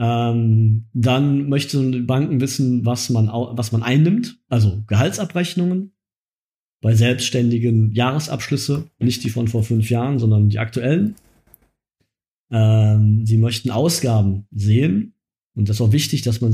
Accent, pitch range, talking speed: German, 110-130 Hz, 130 wpm